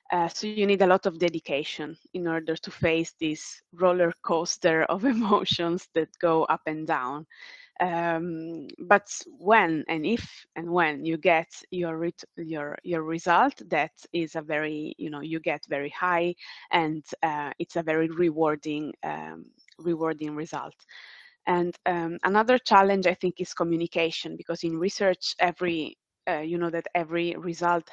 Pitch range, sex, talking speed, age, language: 155-175 Hz, female, 155 wpm, 20-39, English